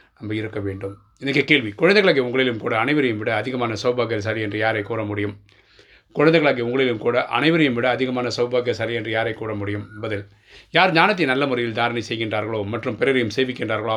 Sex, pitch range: male, 110-125 Hz